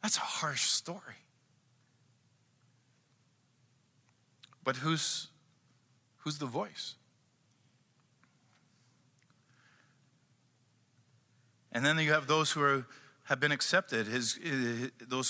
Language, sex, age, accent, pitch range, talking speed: English, male, 50-69, American, 120-140 Hz, 85 wpm